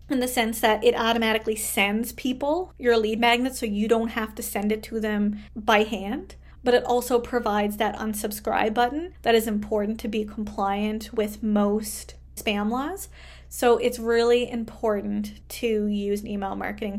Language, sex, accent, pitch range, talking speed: English, female, American, 210-250 Hz, 170 wpm